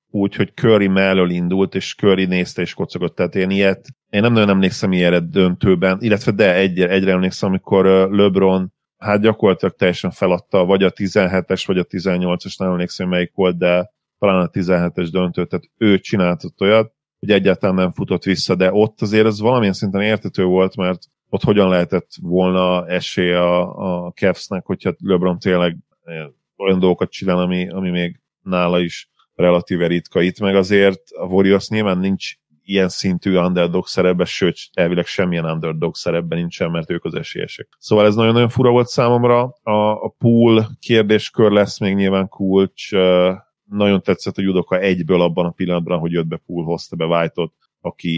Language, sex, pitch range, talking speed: Hungarian, male, 90-100 Hz, 170 wpm